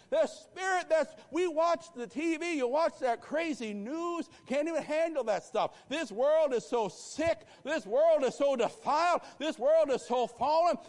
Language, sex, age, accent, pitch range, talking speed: English, male, 60-79, American, 210-320 Hz, 175 wpm